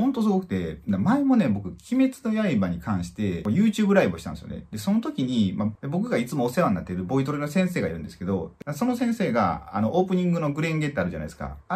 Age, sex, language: 30-49, male, Japanese